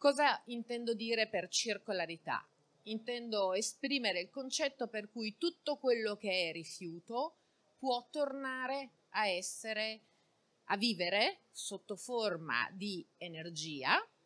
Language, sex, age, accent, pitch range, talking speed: Italian, female, 30-49, native, 185-265 Hz, 110 wpm